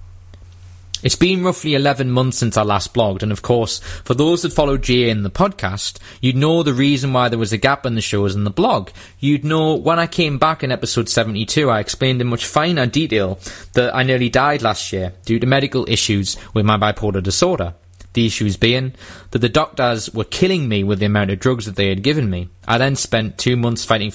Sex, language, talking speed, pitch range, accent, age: male, English, 220 wpm, 100-130 Hz, British, 20-39